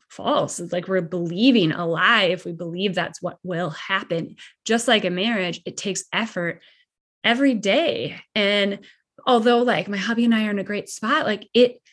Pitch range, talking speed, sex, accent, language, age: 190-250 Hz, 185 wpm, female, American, English, 20-39